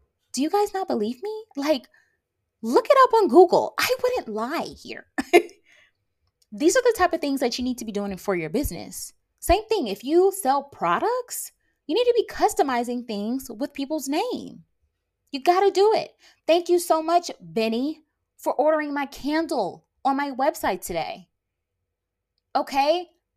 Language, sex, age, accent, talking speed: English, female, 20-39, American, 165 wpm